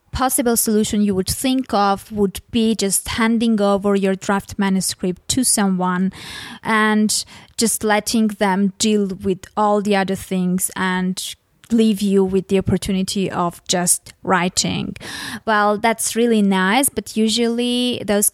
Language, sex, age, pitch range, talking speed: English, female, 20-39, 190-225 Hz, 135 wpm